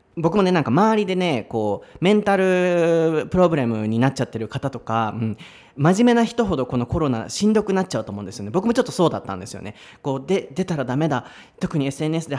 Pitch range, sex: 130-180 Hz, male